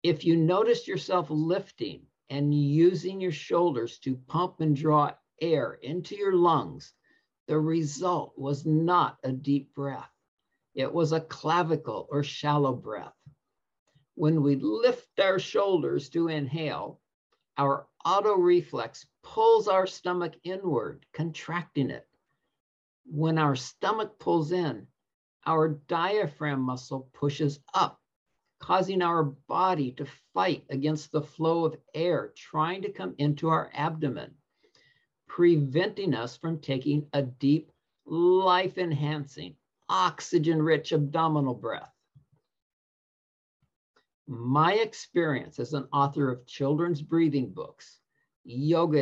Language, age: English, 50-69